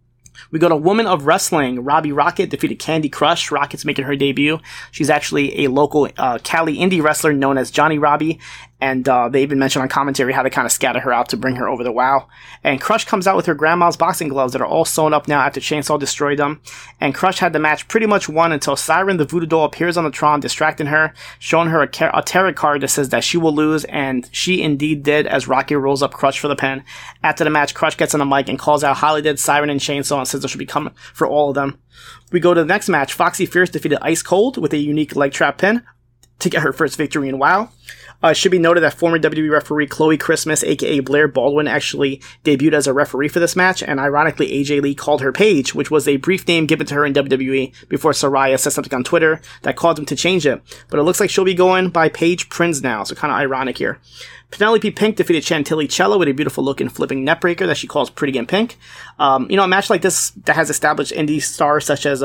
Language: English